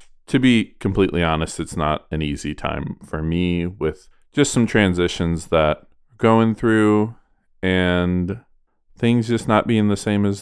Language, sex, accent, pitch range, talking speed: English, male, American, 85-110 Hz, 155 wpm